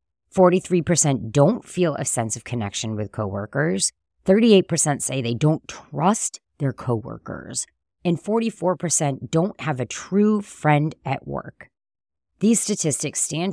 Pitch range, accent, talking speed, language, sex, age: 125-175 Hz, American, 125 wpm, English, female, 30-49